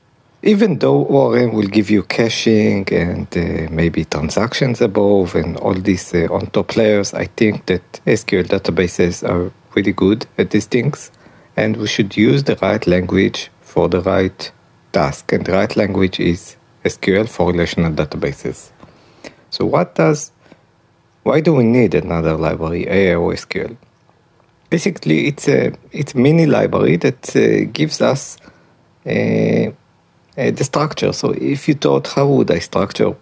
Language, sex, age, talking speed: English, male, 50-69, 150 wpm